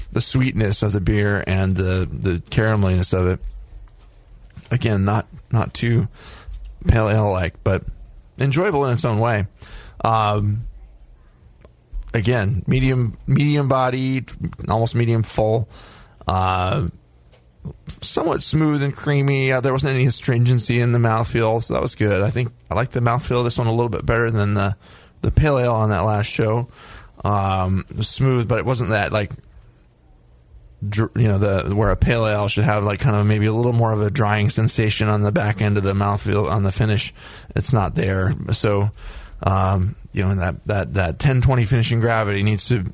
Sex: male